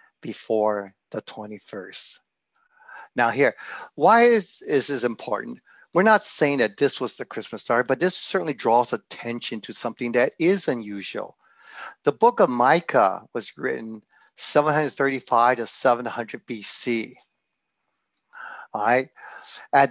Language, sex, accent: English, male, American